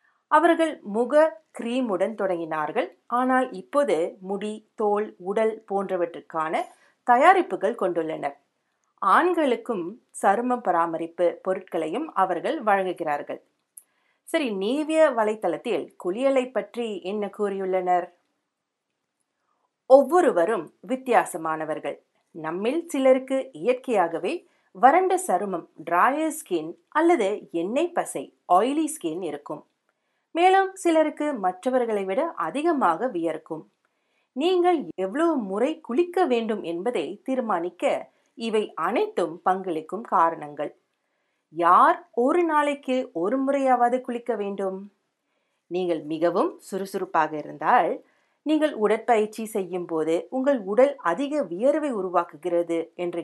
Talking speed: 90 wpm